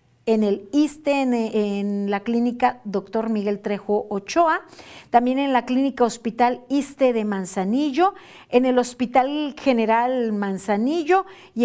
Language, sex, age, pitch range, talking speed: Spanish, female, 40-59, 210-275 Hz, 130 wpm